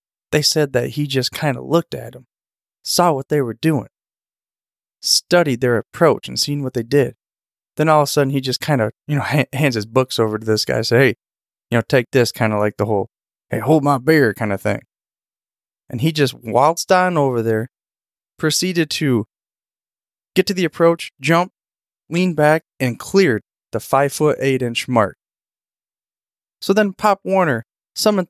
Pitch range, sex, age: 115-155 Hz, male, 20-39